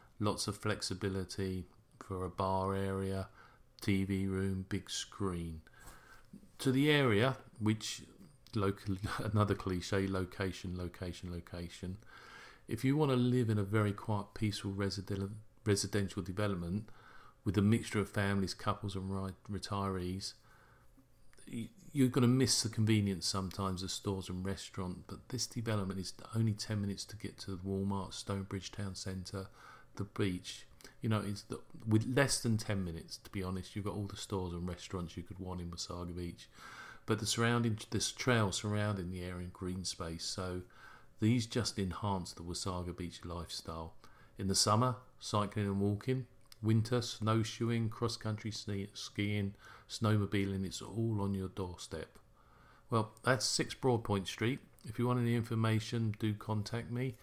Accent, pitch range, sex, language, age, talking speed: British, 95-115 Hz, male, English, 40-59, 150 wpm